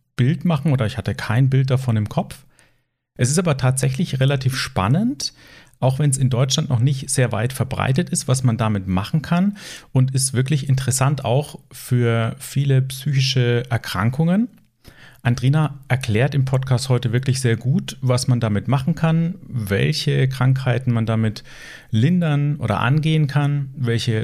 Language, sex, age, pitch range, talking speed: German, male, 40-59, 125-150 Hz, 155 wpm